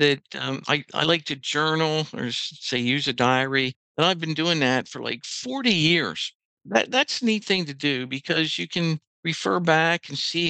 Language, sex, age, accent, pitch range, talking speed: English, male, 60-79, American, 135-155 Hz, 200 wpm